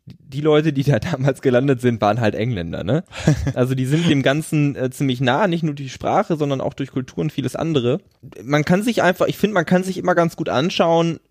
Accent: German